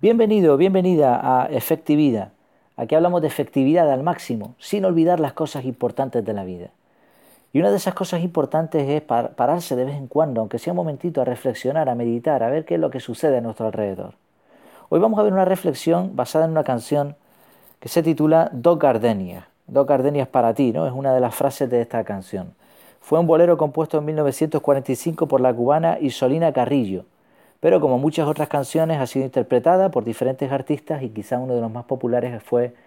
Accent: Argentinian